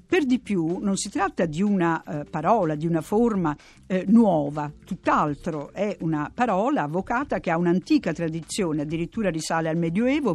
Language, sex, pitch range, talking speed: Italian, female, 165-225 Hz, 160 wpm